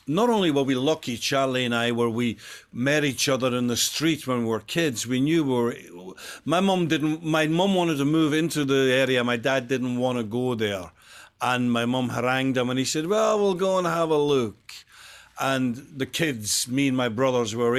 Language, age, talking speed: English, 50-69, 225 wpm